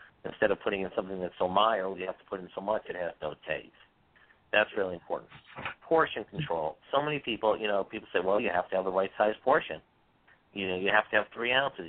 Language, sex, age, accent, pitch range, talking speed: English, male, 50-69, American, 95-120 Hz, 240 wpm